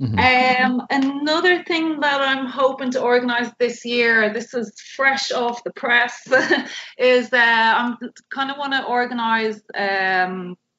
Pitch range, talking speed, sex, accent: 205-245 Hz, 145 wpm, female, Irish